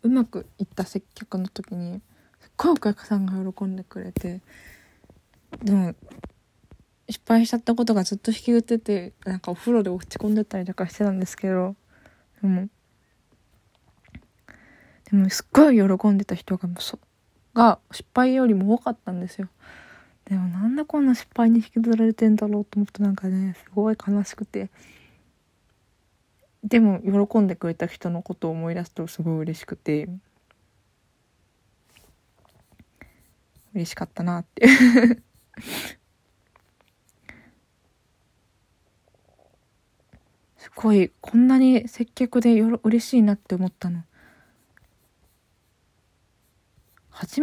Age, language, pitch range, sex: 20-39, Japanese, 175-225 Hz, female